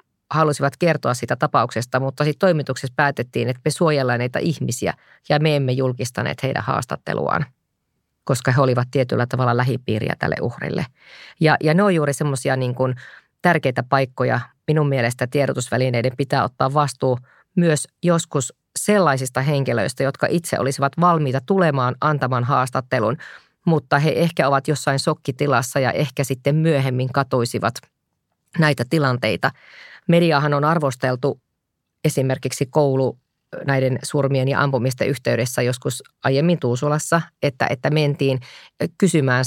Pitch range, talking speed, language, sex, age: 130-150 Hz, 125 wpm, Finnish, female, 30-49